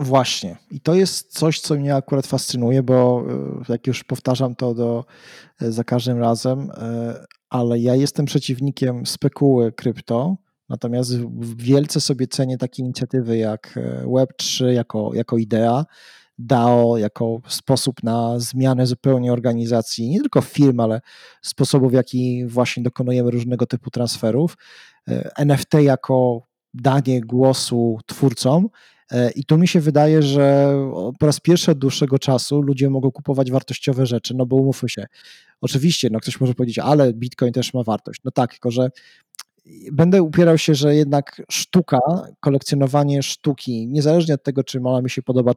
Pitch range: 120-140 Hz